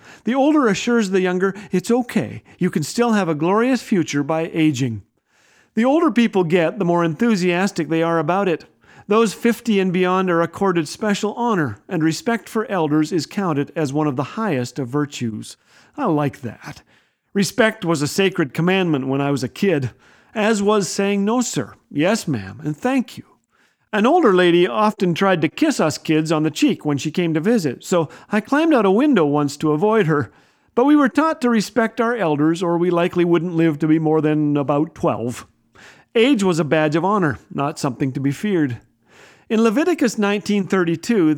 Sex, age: male, 50-69